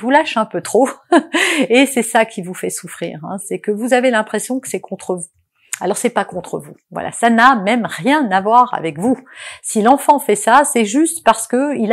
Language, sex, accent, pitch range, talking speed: French, female, French, 205-270 Hz, 220 wpm